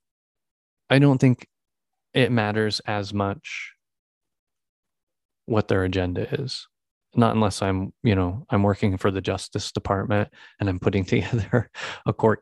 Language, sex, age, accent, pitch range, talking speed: English, male, 20-39, American, 95-120 Hz, 135 wpm